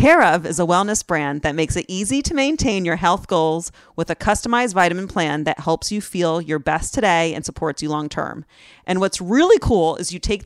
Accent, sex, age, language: American, female, 30-49, English